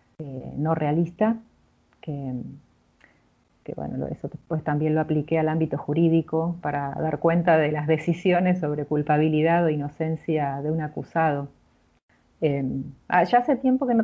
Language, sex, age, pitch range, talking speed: Spanish, female, 40-59, 155-210 Hz, 140 wpm